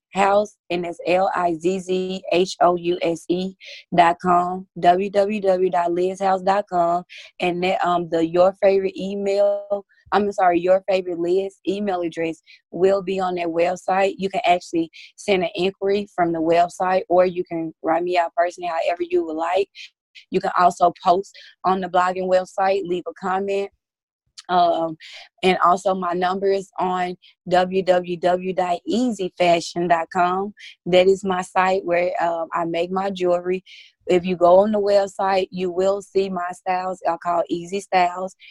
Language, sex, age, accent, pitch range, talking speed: English, female, 20-39, American, 175-195 Hz, 155 wpm